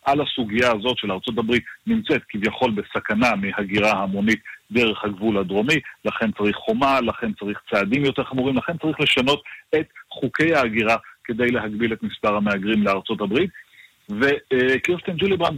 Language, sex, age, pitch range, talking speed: Hebrew, male, 40-59, 115-145 Hz, 145 wpm